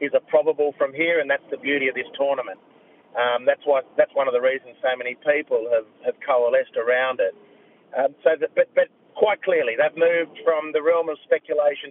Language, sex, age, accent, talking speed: English, male, 40-59, Australian, 210 wpm